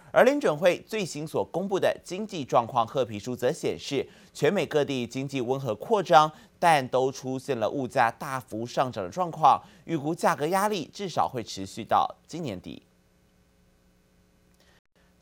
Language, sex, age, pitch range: Chinese, male, 30-49, 125-175 Hz